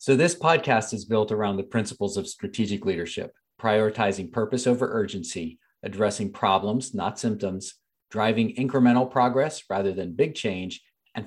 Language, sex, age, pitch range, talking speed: English, male, 40-59, 100-130 Hz, 145 wpm